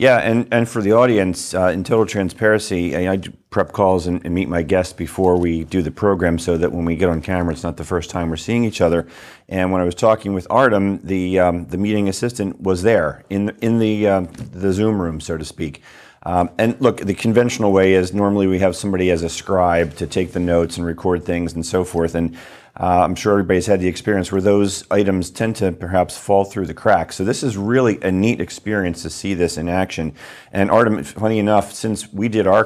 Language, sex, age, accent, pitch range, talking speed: English, male, 40-59, American, 90-105 Hz, 235 wpm